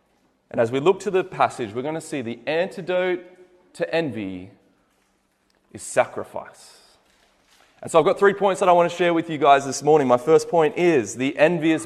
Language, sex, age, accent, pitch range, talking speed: English, male, 20-39, Australian, 120-175 Hz, 195 wpm